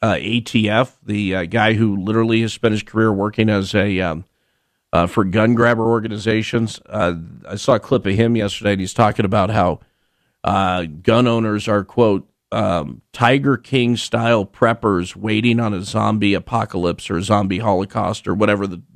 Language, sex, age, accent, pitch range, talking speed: English, male, 50-69, American, 95-115 Hz, 170 wpm